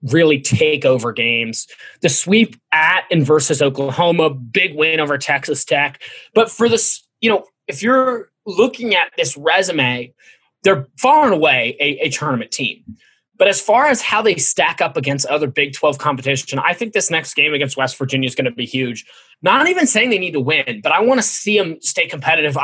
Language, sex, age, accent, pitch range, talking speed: English, male, 20-39, American, 140-215 Hz, 200 wpm